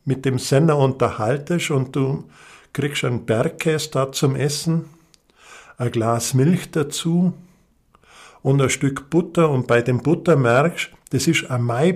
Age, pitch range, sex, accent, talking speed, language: 50-69, 130-155 Hz, male, German, 140 wpm, German